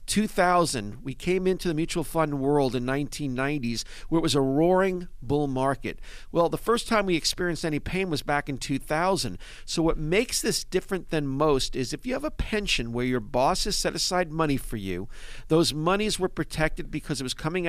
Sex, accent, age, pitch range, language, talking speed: male, American, 50-69, 135-180 Hz, English, 200 wpm